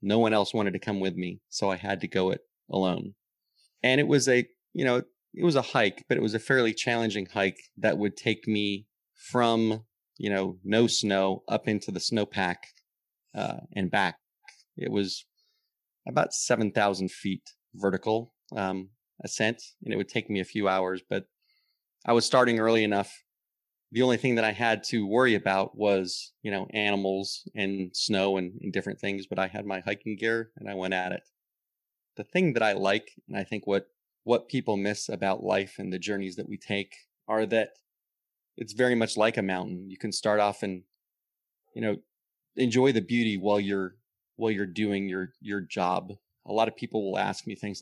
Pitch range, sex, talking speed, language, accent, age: 95-115 Hz, male, 195 wpm, English, American, 30-49